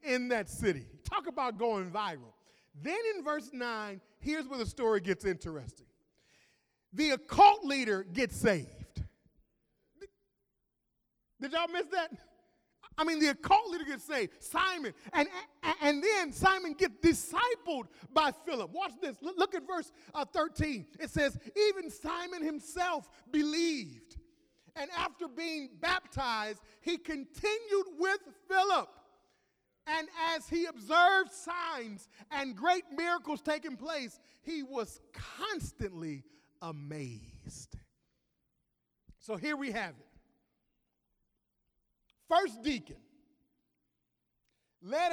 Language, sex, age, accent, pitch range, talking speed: English, male, 30-49, American, 265-350 Hz, 110 wpm